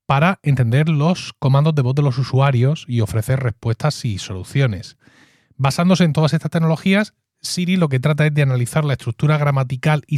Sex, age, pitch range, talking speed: male, 30-49, 120-155 Hz, 175 wpm